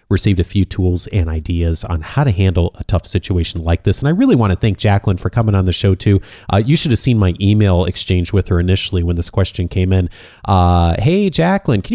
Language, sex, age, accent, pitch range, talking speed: English, male, 30-49, American, 90-115 Hz, 240 wpm